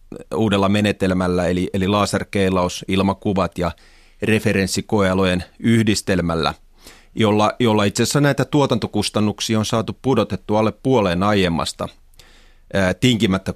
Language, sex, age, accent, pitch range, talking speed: Finnish, male, 30-49, native, 95-110 Hz, 95 wpm